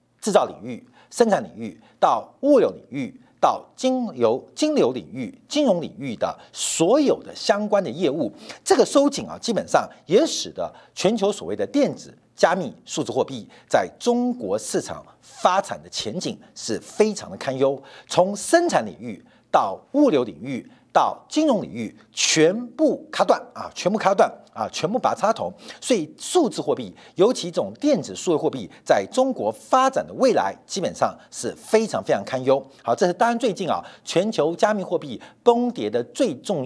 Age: 50-69